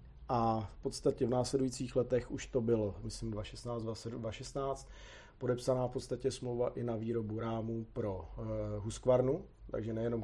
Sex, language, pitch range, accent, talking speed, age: male, Czech, 110-130 Hz, native, 135 wpm, 40-59